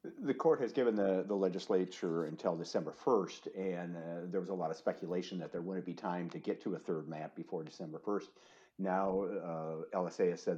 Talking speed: 210 wpm